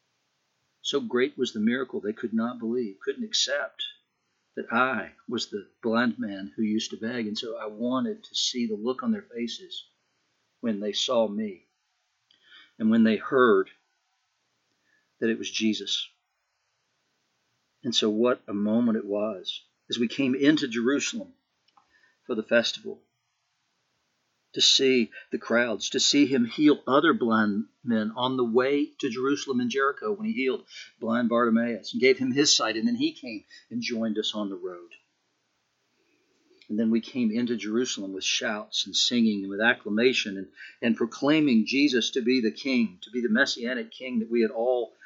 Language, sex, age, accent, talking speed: English, male, 50-69, American, 170 wpm